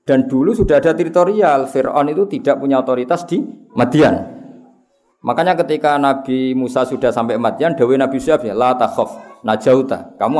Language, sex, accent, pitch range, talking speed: Indonesian, male, native, 110-160 Hz, 150 wpm